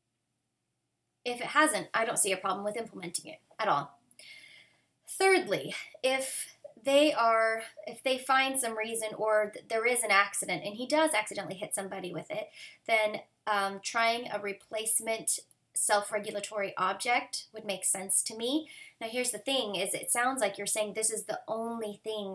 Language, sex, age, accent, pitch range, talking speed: English, female, 20-39, American, 200-240 Hz, 170 wpm